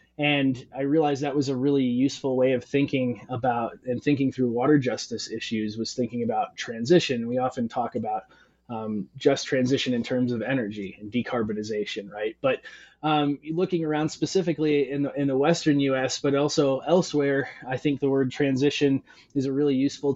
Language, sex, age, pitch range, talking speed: English, male, 20-39, 125-150 Hz, 175 wpm